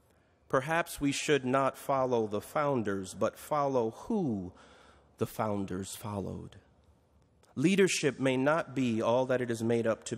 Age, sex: 40-59, male